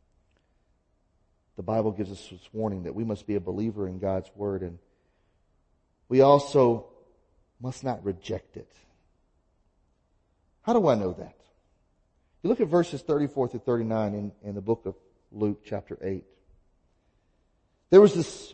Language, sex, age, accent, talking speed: English, male, 40-59, American, 140 wpm